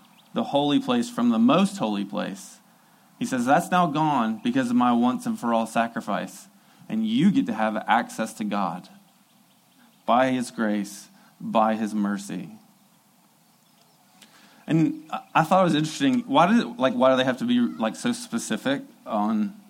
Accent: American